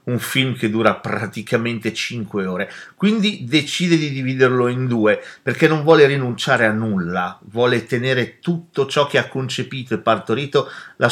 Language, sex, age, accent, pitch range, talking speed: Italian, male, 40-59, native, 115-155 Hz, 155 wpm